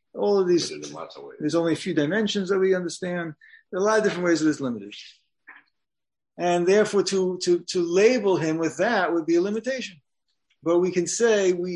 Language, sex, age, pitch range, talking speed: English, male, 50-69, 145-195 Hz, 205 wpm